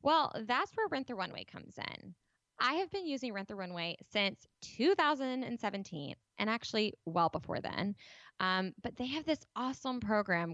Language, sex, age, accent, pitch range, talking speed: English, female, 20-39, American, 185-255 Hz, 165 wpm